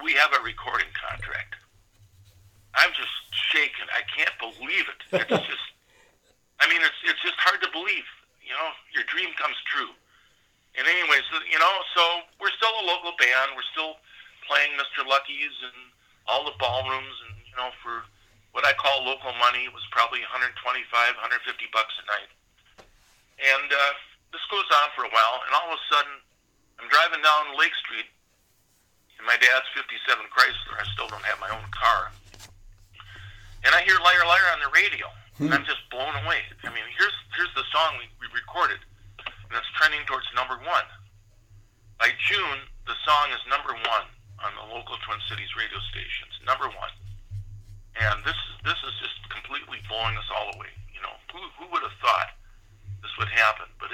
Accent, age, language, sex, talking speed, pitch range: American, 50-69, English, male, 175 wpm, 100-135 Hz